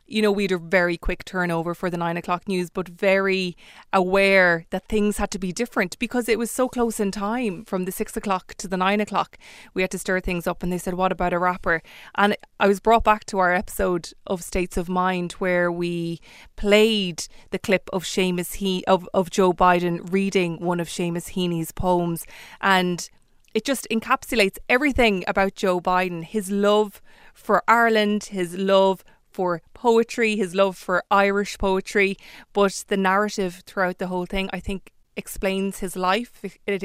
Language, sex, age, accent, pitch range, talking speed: English, female, 20-39, Irish, 180-210 Hz, 180 wpm